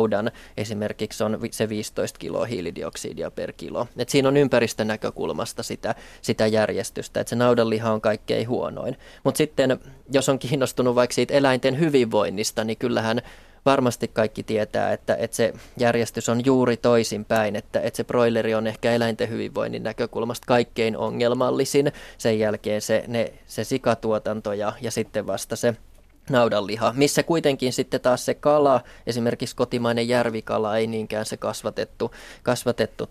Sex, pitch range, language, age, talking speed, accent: male, 110-125 Hz, Finnish, 20-39, 145 wpm, native